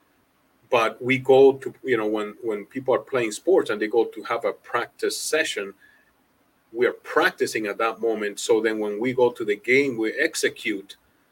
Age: 40-59